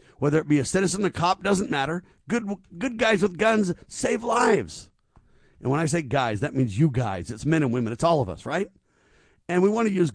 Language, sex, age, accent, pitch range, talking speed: English, male, 50-69, American, 120-155 Hz, 230 wpm